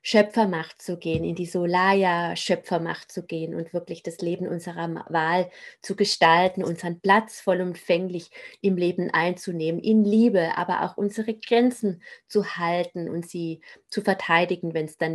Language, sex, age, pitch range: German, female, 30-49, 165-195 Hz